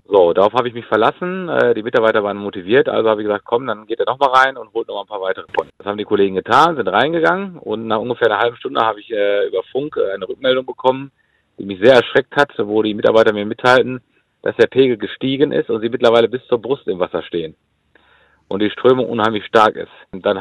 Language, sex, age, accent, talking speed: German, male, 40-59, German, 235 wpm